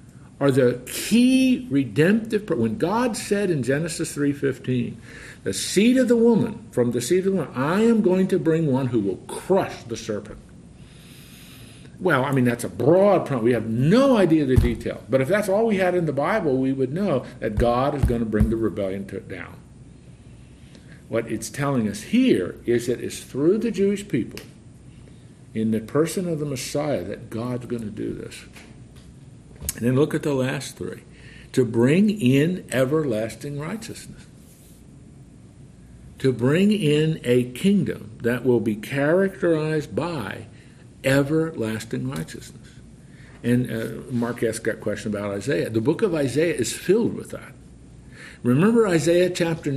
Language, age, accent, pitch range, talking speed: English, 50-69, American, 115-165 Hz, 160 wpm